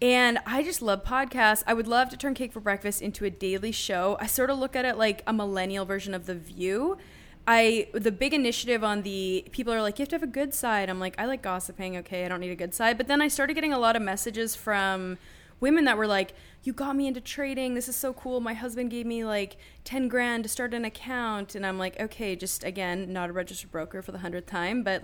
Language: English